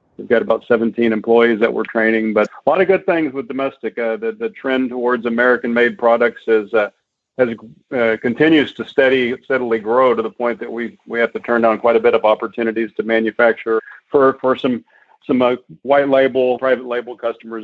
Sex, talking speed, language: male, 200 wpm, English